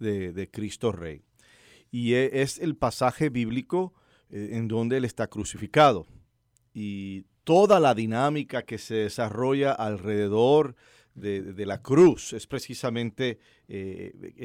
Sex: male